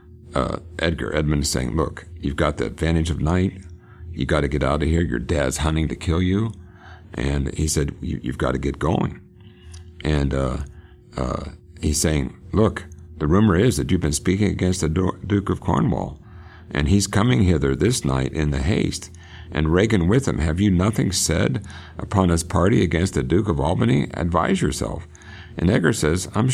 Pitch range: 75-95 Hz